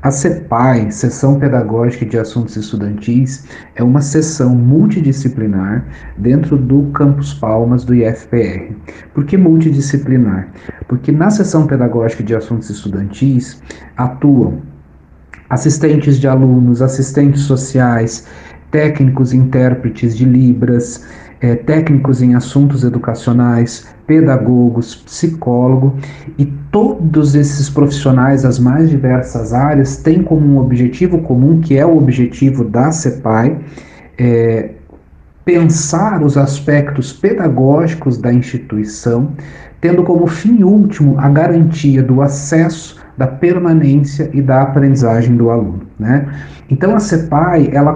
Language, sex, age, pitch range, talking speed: Portuguese, male, 50-69, 120-150 Hz, 110 wpm